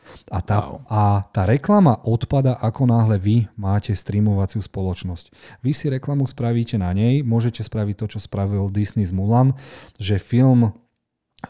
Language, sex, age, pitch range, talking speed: Slovak, male, 30-49, 105-125 Hz, 145 wpm